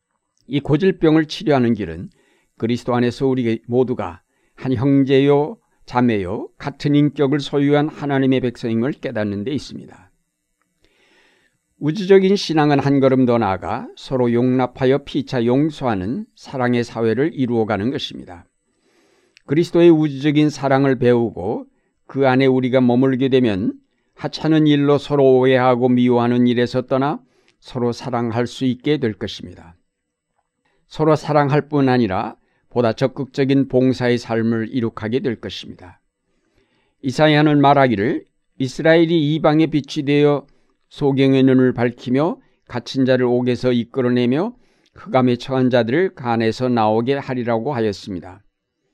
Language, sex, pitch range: Korean, male, 120-145 Hz